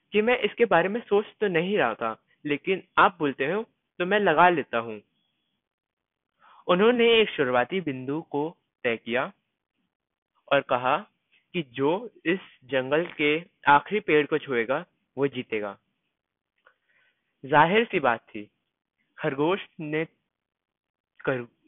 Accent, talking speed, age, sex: Indian, 125 wpm, 20-39, male